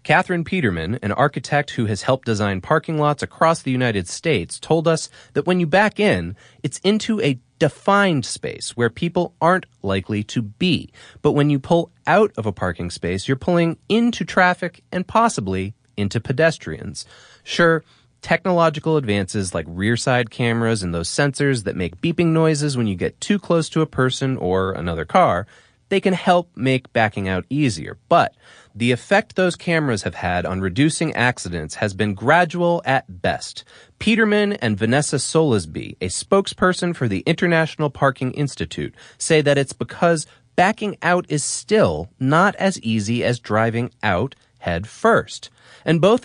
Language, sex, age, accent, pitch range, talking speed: English, male, 30-49, American, 110-165 Hz, 160 wpm